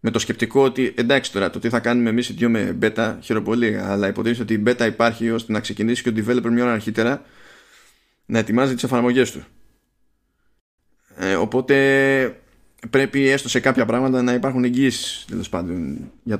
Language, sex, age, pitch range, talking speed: Greek, male, 20-39, 105-130 Hz, 175 wpm